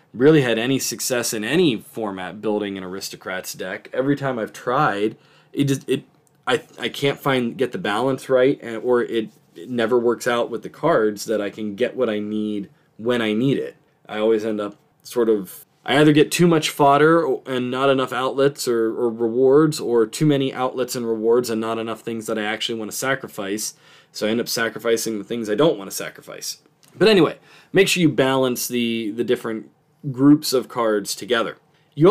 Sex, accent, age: male, American, 20-39